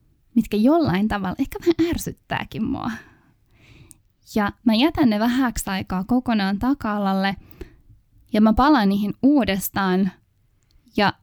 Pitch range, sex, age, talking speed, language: 190-245 Hz, female, 10-29, 110 wpm, Finnish